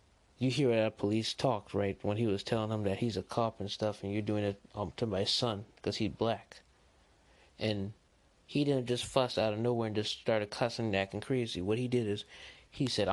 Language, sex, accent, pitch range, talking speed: English, male, American, 105-125 Hz, 225 wpm